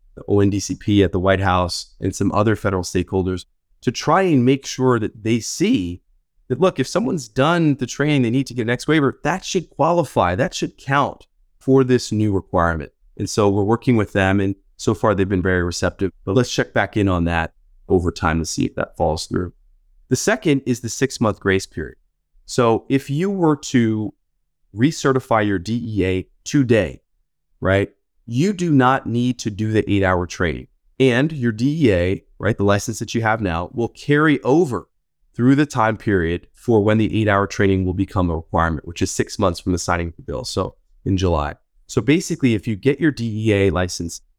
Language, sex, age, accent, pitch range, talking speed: English, male, 20-39, American, 90-125 Hz, 195 wpm